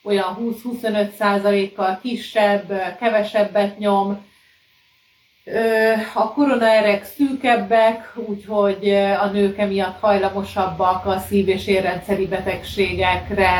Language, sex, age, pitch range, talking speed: Hungarian, female, 30-49, 200-235 Hz, 80 wpm